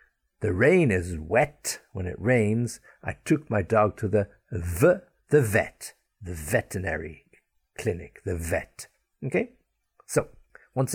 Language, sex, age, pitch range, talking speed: English, male, 60-79, 90-115 Hz, 130 wpm